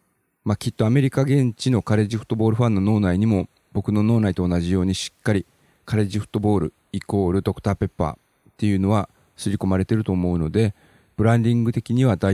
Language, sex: Japanese, male